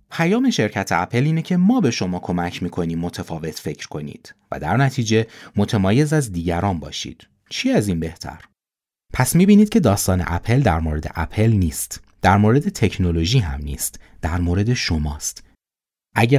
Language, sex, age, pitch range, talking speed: Persian, male, 30-49, 90-130 Hz, 155 wpm